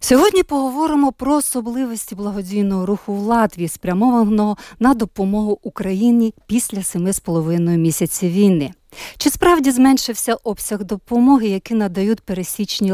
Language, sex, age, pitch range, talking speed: Ukrainian, female, 50-69, 180-240 Hz, 110 wpm